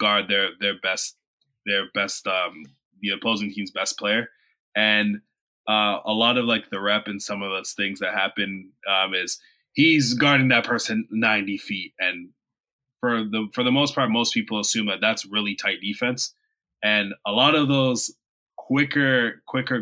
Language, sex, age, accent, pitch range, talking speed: English, male, 20-39, American, 105-130 Hz, 175 wpm